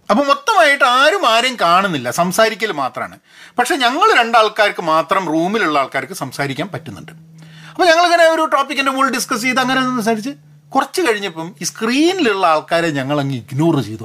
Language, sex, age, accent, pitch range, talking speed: Malayalam, male, 40-59, native, 145-235 Hz, 145 wpm